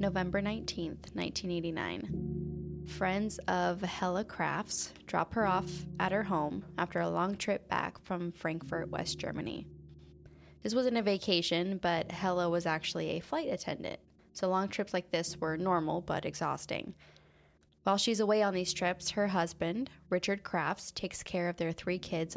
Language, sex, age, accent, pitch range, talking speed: English, female, 10-29, American, 160-190 Hz, 155 wpm